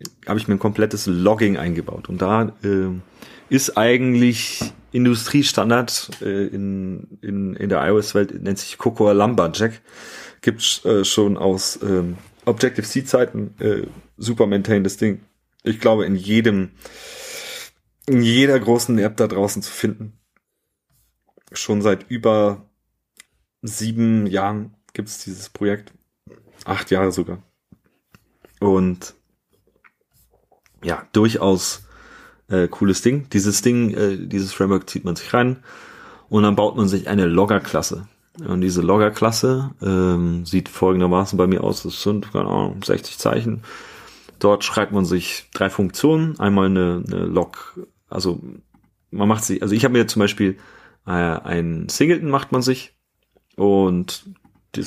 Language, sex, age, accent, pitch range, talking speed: German, male, 30-49, German, 95-115 Hz, 130 wpm